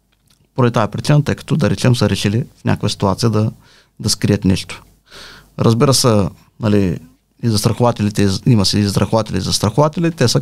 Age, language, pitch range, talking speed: 30-49, Bulgarian, 100-135 Hz, 155 wpm